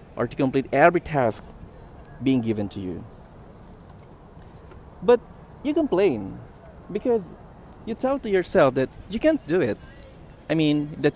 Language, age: English, 20-39